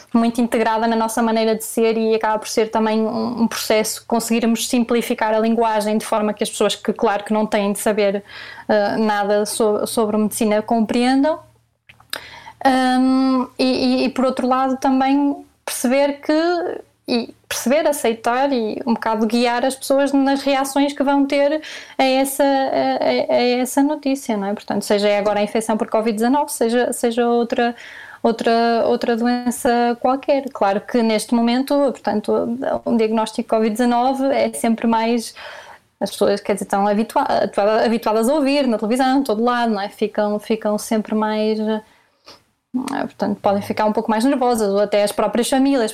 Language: Portuguese